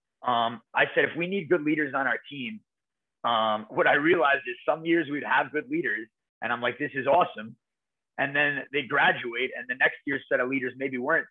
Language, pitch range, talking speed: English, 120-160 Hz, 220 wpm